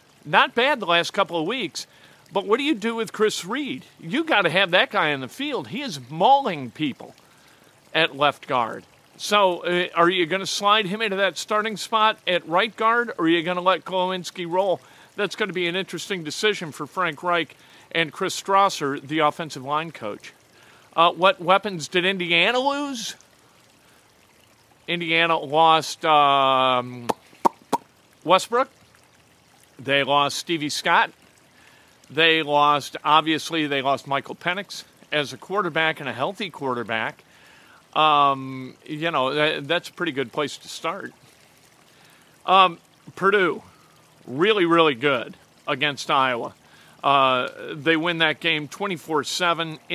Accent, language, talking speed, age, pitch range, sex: American, English, 145 wpm, 50-69, 150-190 Hz, male